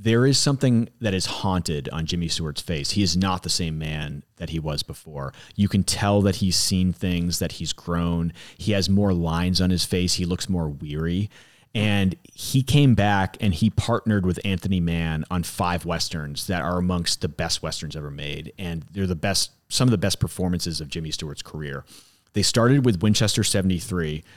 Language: English